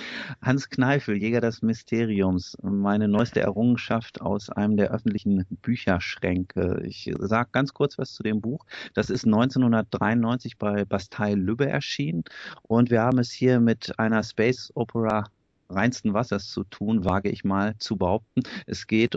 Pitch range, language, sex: 100-115 Hz, German, male